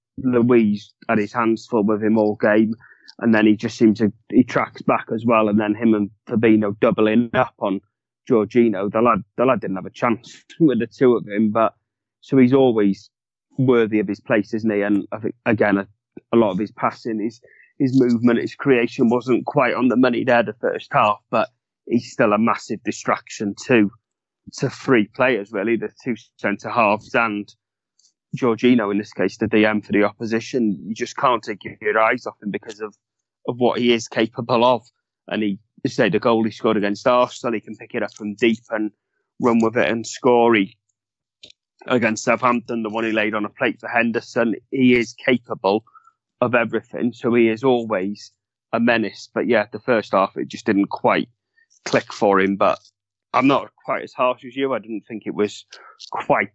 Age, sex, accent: 30-49, male, British